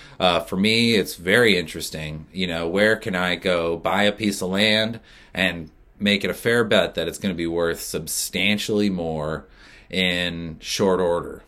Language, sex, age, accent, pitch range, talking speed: English, male, 30-49, American, 80-105 Hz, 180 wpm